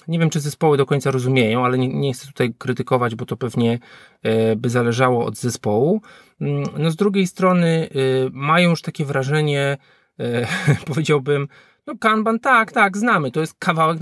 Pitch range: 130-165 Hz